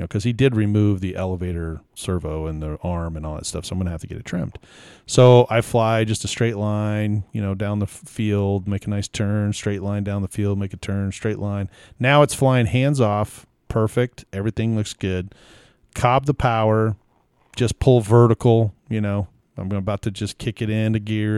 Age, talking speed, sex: 40-59, 210 wpm, male